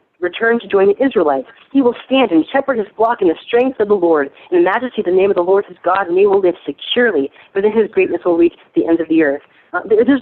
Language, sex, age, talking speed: English, female, 30-49, 280 wpm